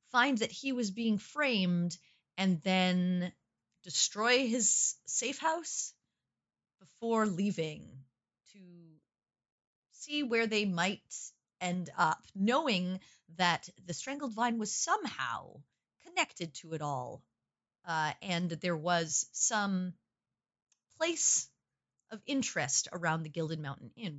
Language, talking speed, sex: English, 115 wpm, female